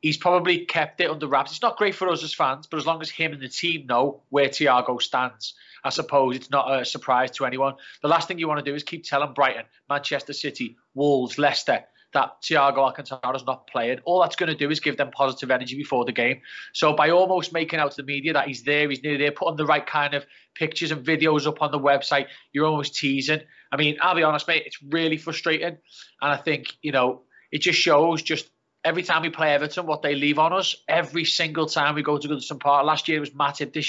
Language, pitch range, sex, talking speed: English, 140-155 Hz, male, 245 wpm